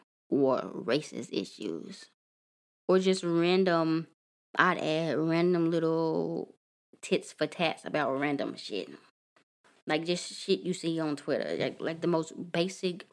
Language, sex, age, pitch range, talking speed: English, female, 20-39, 155-185 Hz, 130 wpm